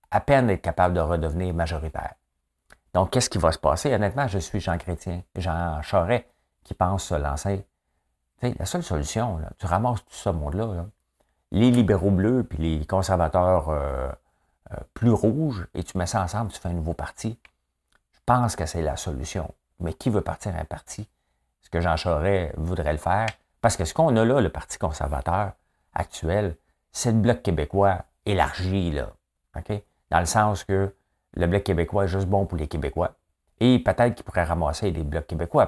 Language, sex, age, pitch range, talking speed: French, male, 50-69, 80-100 Hz, 190 wpm